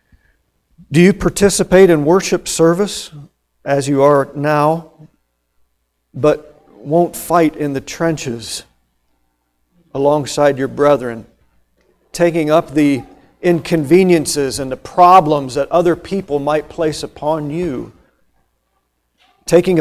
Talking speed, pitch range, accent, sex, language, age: 105 wpm, 140-205 Hz, American, male, English, 50-69